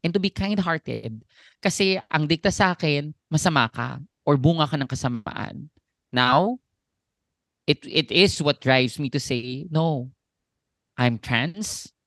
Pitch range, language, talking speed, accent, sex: 115-155 Hz, Filipino, 140 wpm, native, male